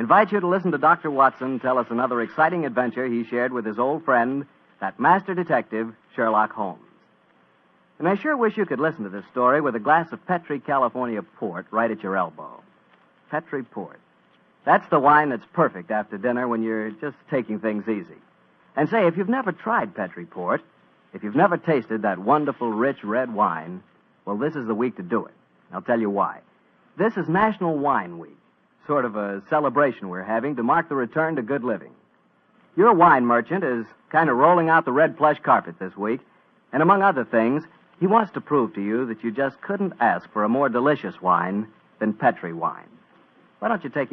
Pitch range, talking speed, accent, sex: 115-165 Hz, 200 wpm, American, male